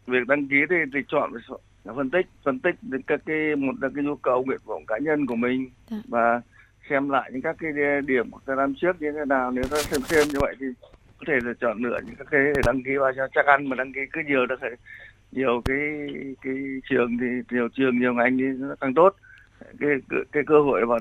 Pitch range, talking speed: 125-145 Hz, 235 wpm